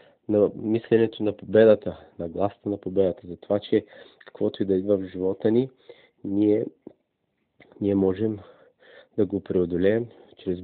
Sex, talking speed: male, 140 wpm